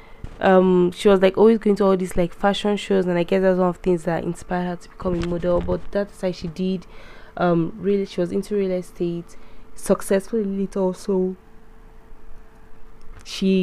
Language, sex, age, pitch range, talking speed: English, female, 10-29, 170-200 Hz, 190 wpm